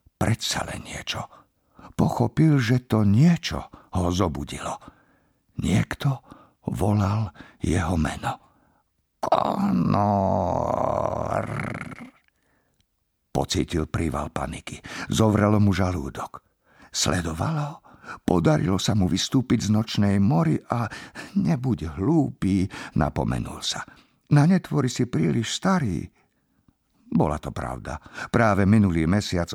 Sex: male